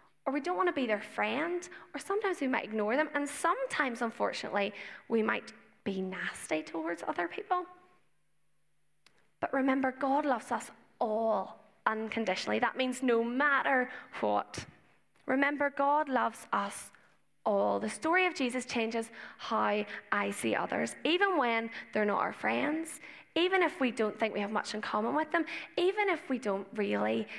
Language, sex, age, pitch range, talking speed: English, female, 10-29, 210-310 Hz, 160 wpm